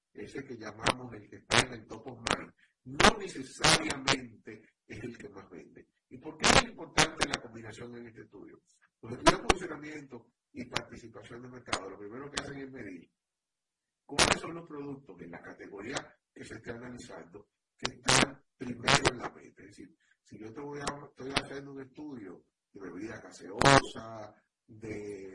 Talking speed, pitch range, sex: 170 wpm, 110-140 Hz, male